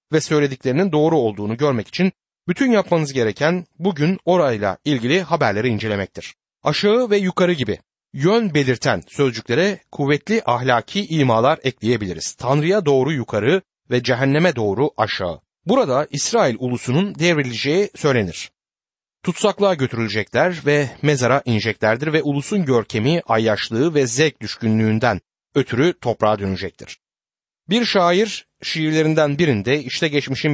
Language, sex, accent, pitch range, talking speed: Turkish, male, native, 120-170 Hz, 115 wpm